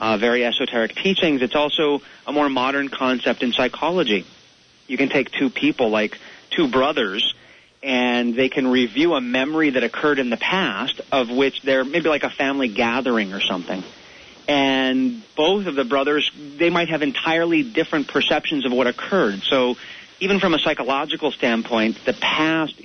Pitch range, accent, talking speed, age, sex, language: 130-170 Hz, American, 165 wpm, 30-49, male, English